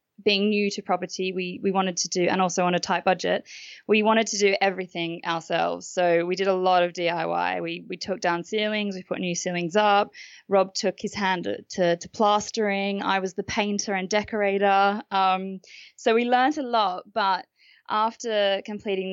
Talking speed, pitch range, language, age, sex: 190 wpm, 175-205 Hz, English, 20-39, female